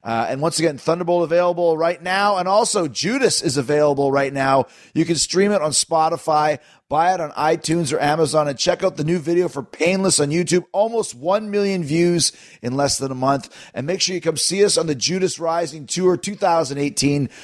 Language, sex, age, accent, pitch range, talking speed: English, male, 30-49, American, 145-180 Hz, 205 wpm